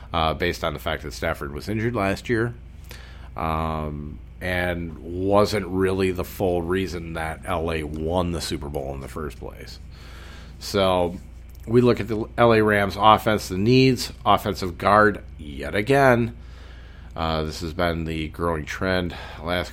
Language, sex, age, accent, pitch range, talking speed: English, male, 40-59, American, 80-100 Hz, 155 wpm